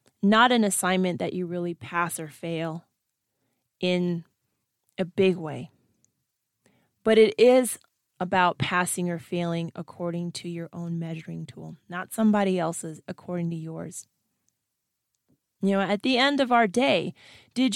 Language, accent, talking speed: English, American, 140 wpm